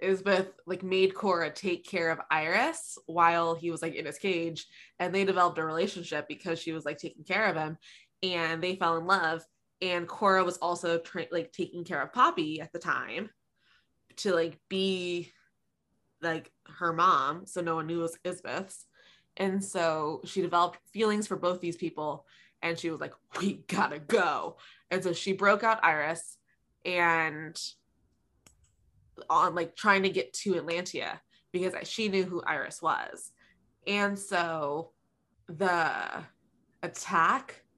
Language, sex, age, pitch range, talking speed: English, female, 20-39, 165-190 Hz, 155 wpm